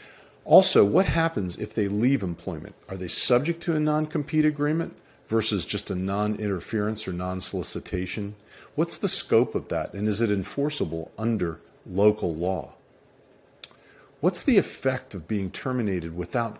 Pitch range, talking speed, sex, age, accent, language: 95-130 Hz, 140 wpm, male, 50-69, American, English